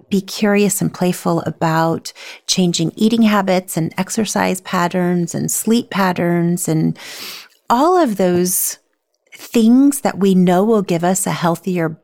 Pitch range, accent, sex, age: 170-220 Hz, American, female, 30-49